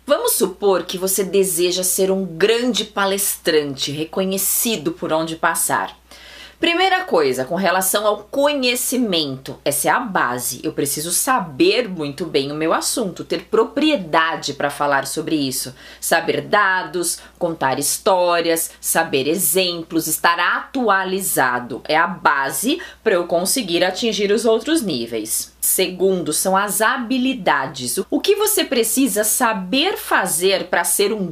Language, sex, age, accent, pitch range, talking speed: Portuguese, female, 20-39, Brazilian, 170-260 Hz, 130 wpm